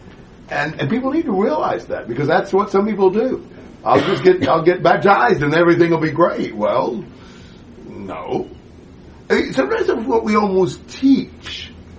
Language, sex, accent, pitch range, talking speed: English, male, American, 120-170 Hz, 165 wpm